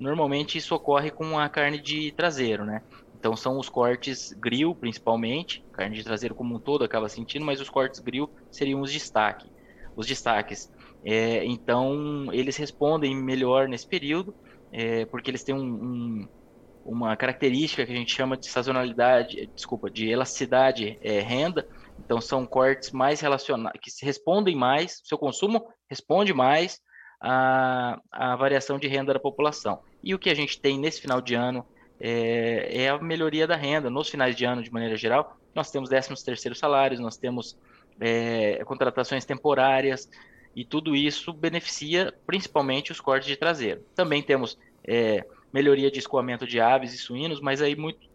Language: Portuguese